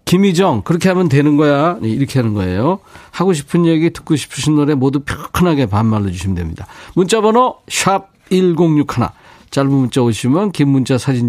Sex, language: male, Korean